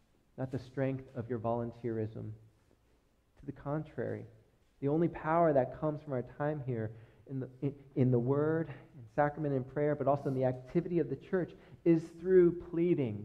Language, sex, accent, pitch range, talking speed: English, male, American, 120-150 Hz, 175 wpm